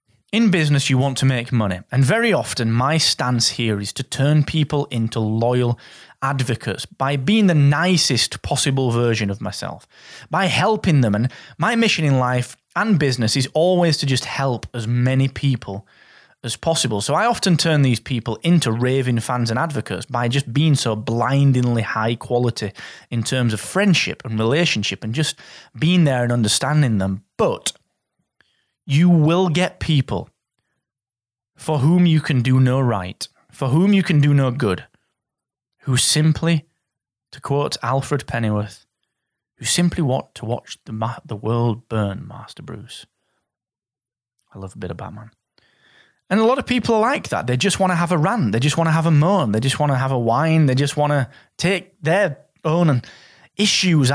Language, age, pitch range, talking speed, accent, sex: English, 20-39, 115-155 Hz, 175 wpm, British, male